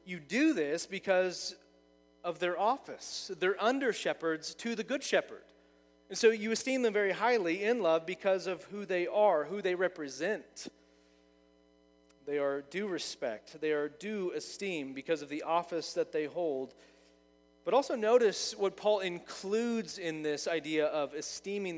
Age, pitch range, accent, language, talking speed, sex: 30-49, 120-190 Hz, American, English, 155 wpm, male